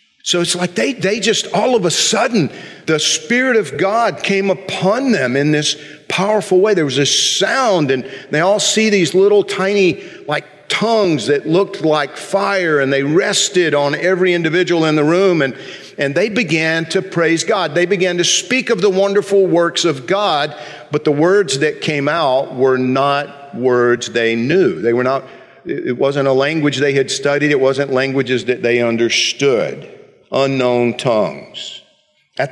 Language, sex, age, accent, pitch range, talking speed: English, male, 50-69, American, 140-195 Hz, 175 wpm